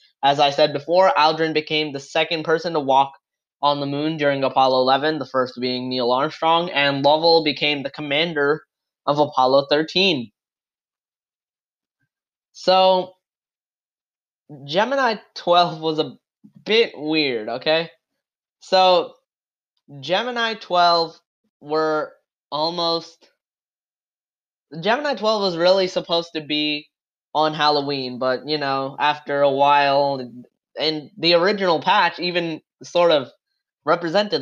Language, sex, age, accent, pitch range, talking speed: English, male, 10-29, American, 140-175 Hz, 115 wpm